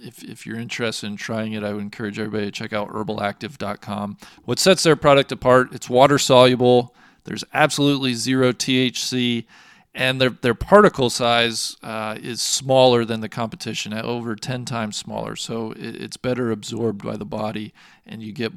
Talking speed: 170 wpm